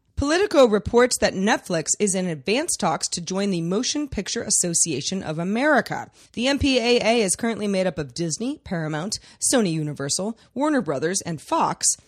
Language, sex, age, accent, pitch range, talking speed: English, female, 30-49, American, 170-230 Hz, 155 wpm